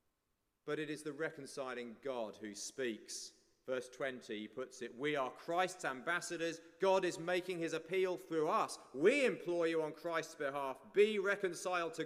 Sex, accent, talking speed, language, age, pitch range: male, British, 165 wpm, English, 40-59, 115-175 Hz